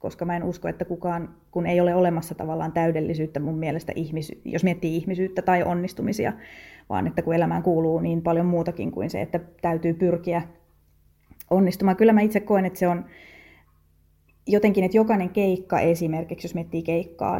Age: 30-49